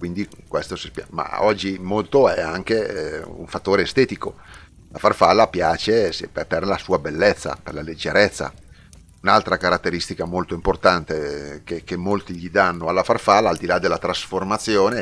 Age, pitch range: 40-59, 85-100 Hz